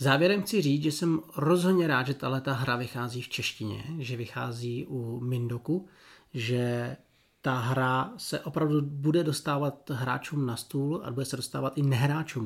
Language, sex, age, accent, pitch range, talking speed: Czech, male, 40-59, native, 130-155 Hz, 160 wpm